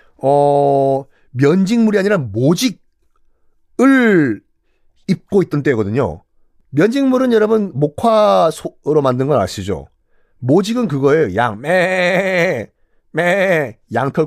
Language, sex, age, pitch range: Korean, male, 40-59, 135-230 Hz